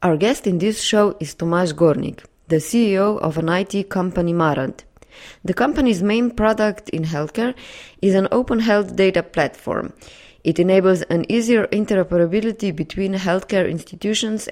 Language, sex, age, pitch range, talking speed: English, female, 20-39, 165-210 Hz, 145 wpm